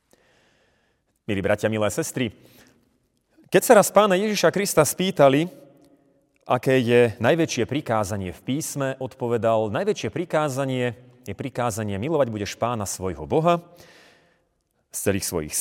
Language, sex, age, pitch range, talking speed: Slovak, male, 30-49, 100-145 Hz, 115 wpm